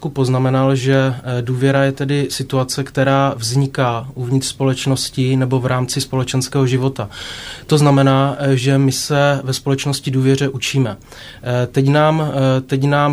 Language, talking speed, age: Czech, 130 wpm, 20-39